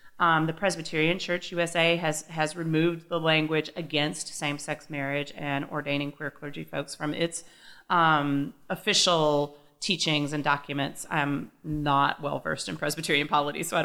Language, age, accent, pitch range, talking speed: English, 30-49, American, 150-185 Hz, 145 wpm